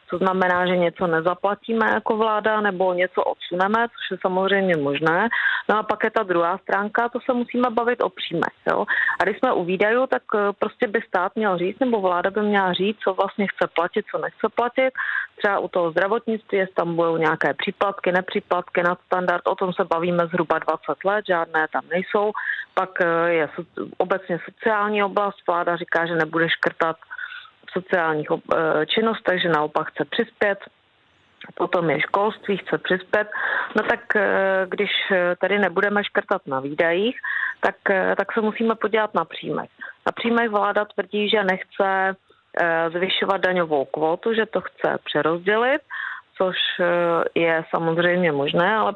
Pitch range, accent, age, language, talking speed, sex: 175-210 Hz, native, 40-59, Czech, 155 wpm, female